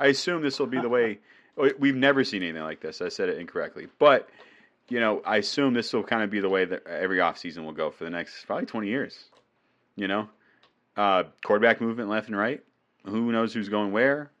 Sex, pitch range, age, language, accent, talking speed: male, 105-135 Hz, 30-49, English, American, 225 wpm